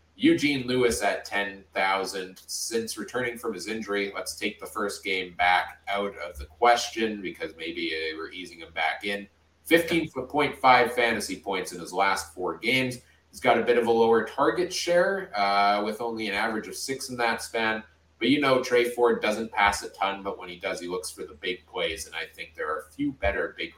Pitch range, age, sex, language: 90-130 Hz, 30-49, male, English